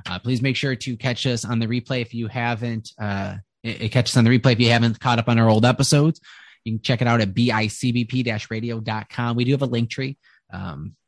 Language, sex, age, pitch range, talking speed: English, male, 20-39, 105-120 Hz, 240 wpm